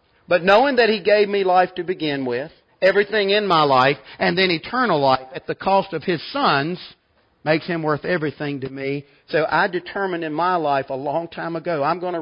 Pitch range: 165-205 Hz